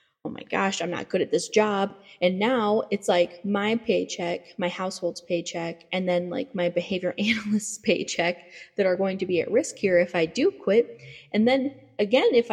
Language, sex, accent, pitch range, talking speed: English, female, American, 180-230 Hz, 195 wpm